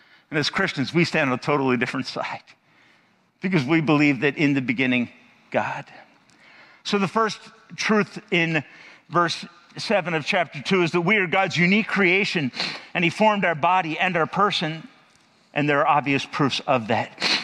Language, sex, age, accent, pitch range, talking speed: English, male, 50-69, American, 150-210 Hz, 170 wpm